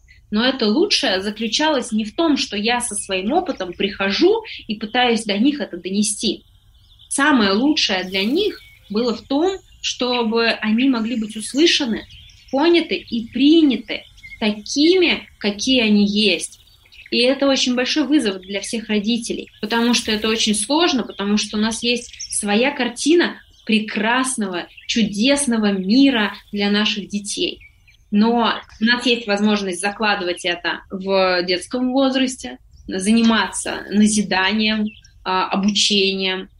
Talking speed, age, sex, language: 125 wpm, 20-39, female, Russian